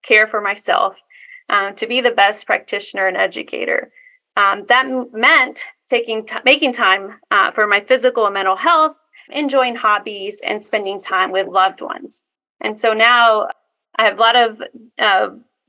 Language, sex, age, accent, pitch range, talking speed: English, female, 30-49, American, 205-280 Hz, 165 wpm